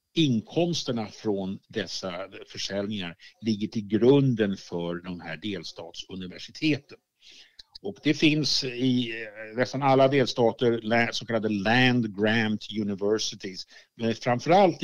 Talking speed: 100 wpm